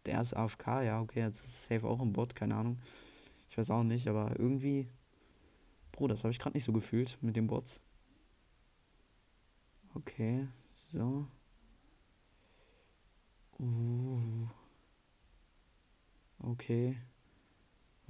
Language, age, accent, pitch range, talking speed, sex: German, 20-39, German, 110-125 Hz, 115 wpm, male